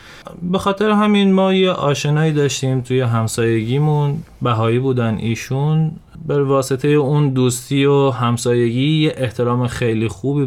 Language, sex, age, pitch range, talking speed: Persian, male, 20-39, 115-150 Hz, 125 wpm